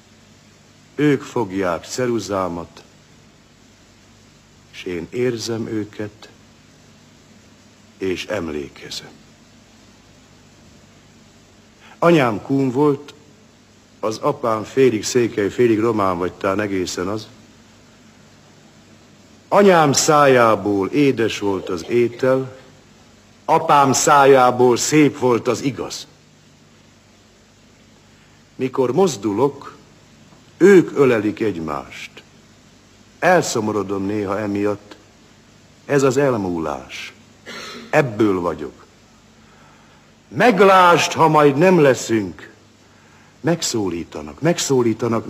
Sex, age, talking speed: male, 60-79, 70 wpm